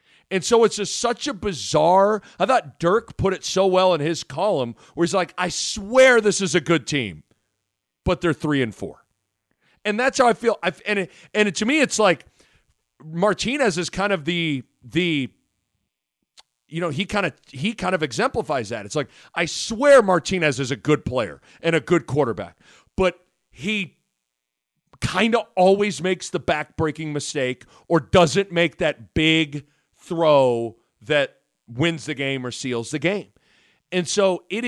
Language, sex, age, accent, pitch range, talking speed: English, male, 40-59, American, 150-210 Hz, 175 wpm